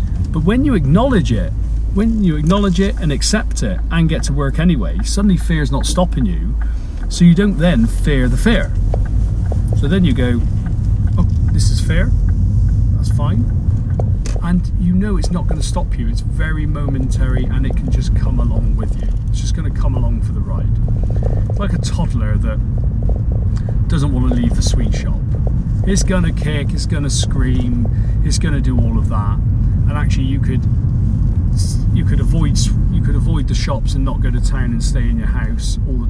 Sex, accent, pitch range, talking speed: male, British, 100-120 Hz, 200 wpm